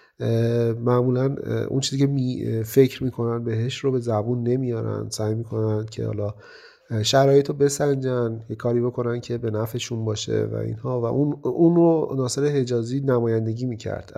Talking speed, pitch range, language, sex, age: 150 wpm, 110-125 Hz, Persian, male, 30-49